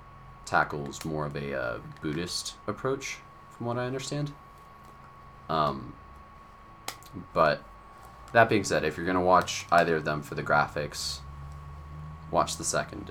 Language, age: English, 30-49